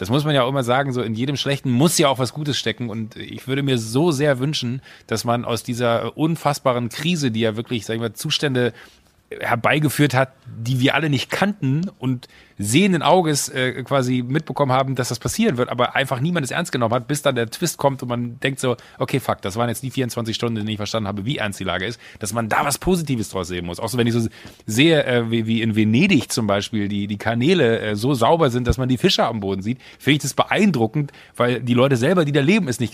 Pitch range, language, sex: 115-150 Hz, German, male